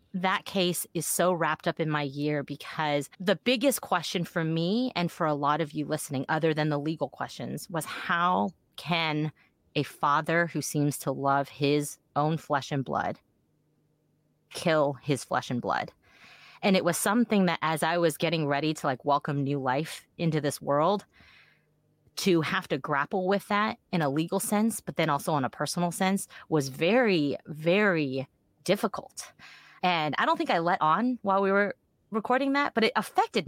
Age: 30-49